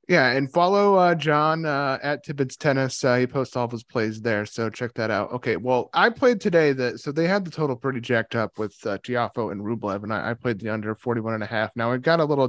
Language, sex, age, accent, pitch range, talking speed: English, male, 30-49, American, 115-140 Hz, 265 wpm